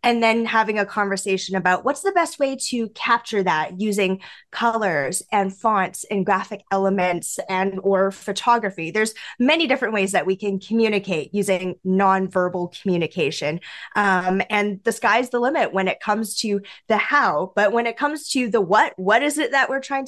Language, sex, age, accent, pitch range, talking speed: English, female, 10-29, American, 195-260 Hz, 175 wpm